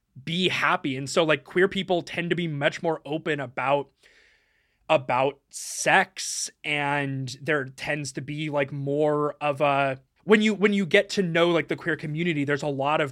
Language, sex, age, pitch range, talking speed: English, male, 20-39, 145-185 Hz, 185 wpm